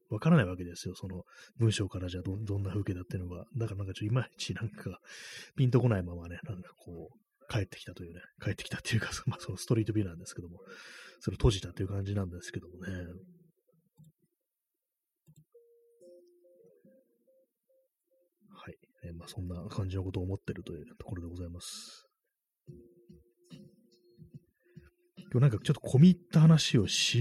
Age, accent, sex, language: 30-49, native, male, Japanese